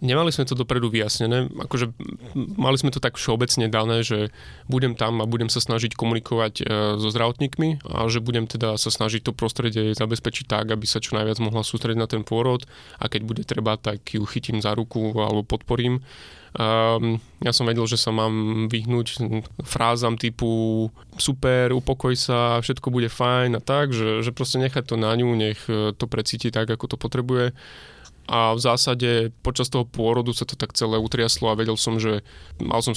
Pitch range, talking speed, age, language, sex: 110-125 Hz, 180 wpm, 20-39, Slovak, male